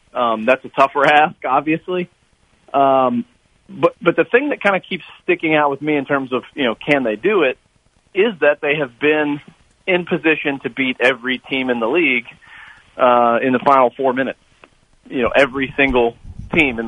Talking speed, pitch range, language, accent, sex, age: 190 wpm, 120-140 Hz, English, American, male, 40-59